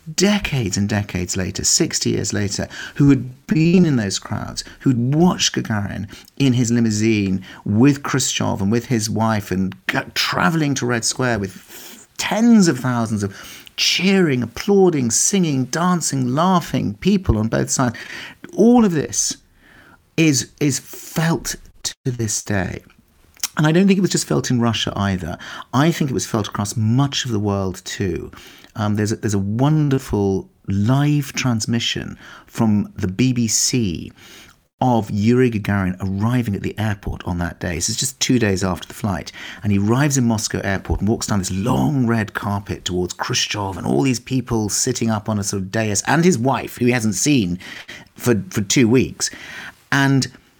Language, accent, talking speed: English, British, 165 wpm